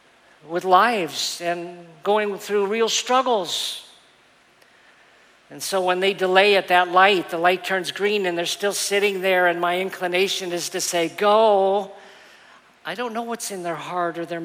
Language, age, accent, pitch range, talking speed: English, 50-69, American, 175-205 Hz, 165 wpm